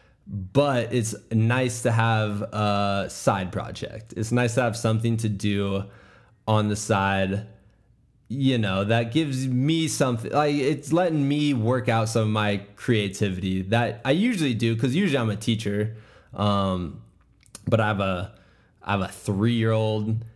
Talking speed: 155 wpm